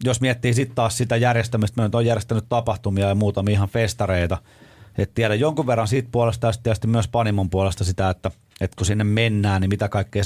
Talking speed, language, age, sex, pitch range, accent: 205 wpm, Finnish, 30-49, male, 95-115 Hz, native